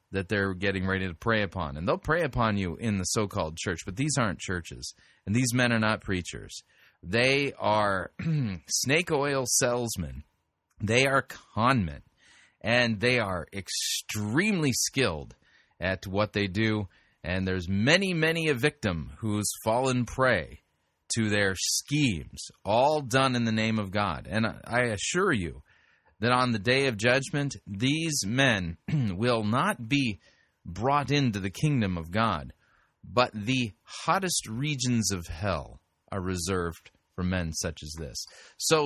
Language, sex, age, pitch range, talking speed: English, male, 30-49, 95-135 Hz, 150 wpm